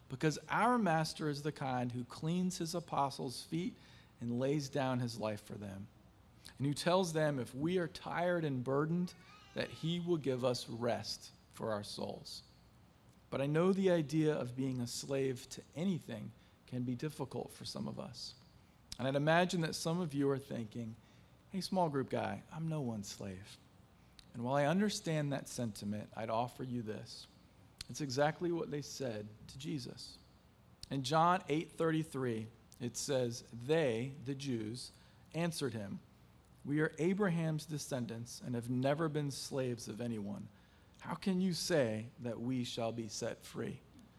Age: 40-59